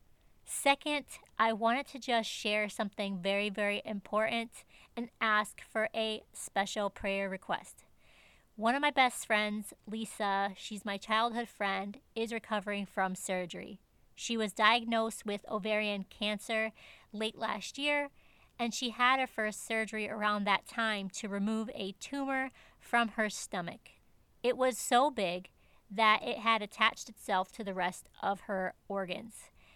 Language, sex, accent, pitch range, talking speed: English, female, American, 200-235 Hz, 145 wpm